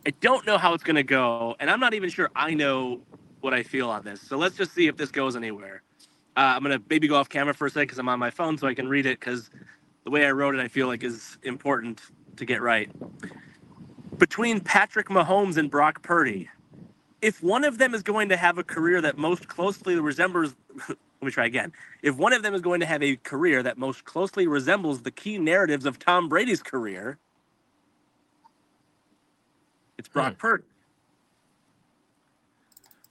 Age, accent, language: 30-49, American, English